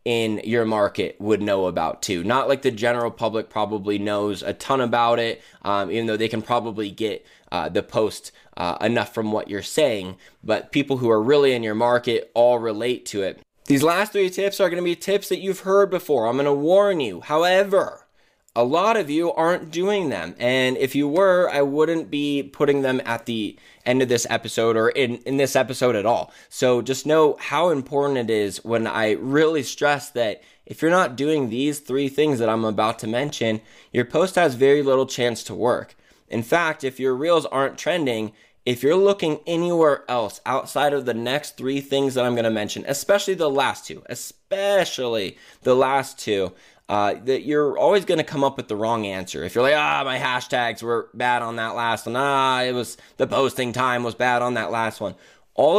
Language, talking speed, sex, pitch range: English, 210 wpm, male, 115-145 Hz